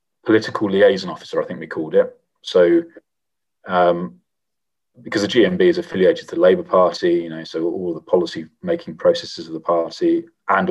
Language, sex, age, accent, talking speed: English, male, 30-49, British, 175 wpm